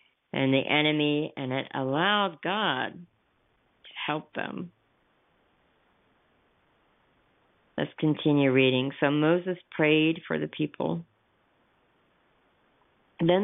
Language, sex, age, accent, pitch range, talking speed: English, female, 50-69, American, 135-170 Hz, 90 wpm